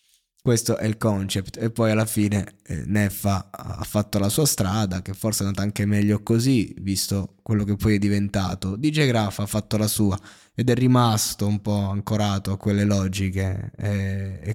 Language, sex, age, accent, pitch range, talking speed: Italian, male, 20-39, native, 105-120 Hz, 175 wpm